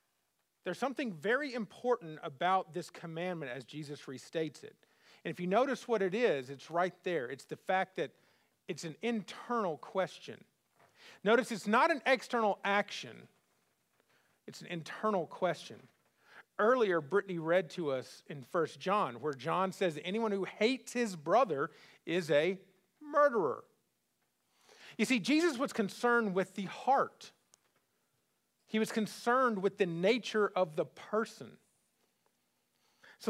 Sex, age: male, 40-59